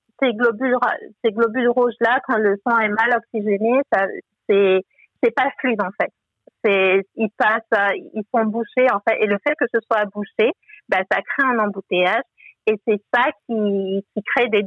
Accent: French